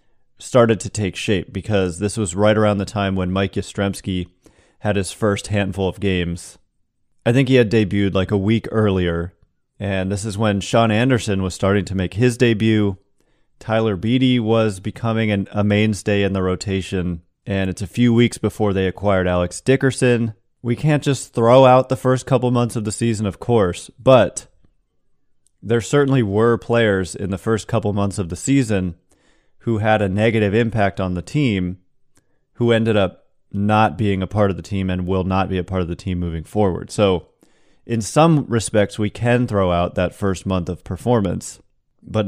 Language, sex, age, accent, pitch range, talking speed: English, male, 30-49, American, 95-115 Hz, 185 wpm